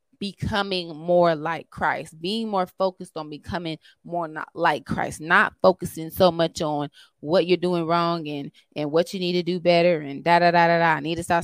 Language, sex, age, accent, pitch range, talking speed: English, female, 20-39, American, 165-200 Hz, 210 wpm